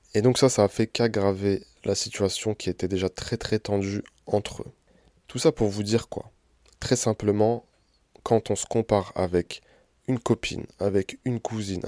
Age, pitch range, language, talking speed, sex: 20-39, 95-120 Hz, French, 175 wpm, male